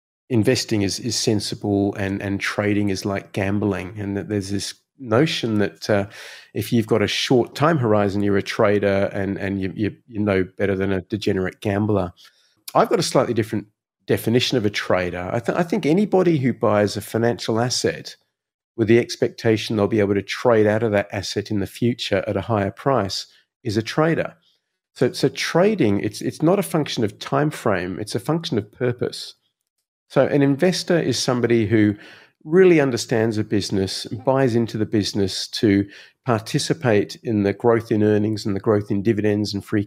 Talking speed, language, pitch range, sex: 185 wpm, English, 100-120 Hz, male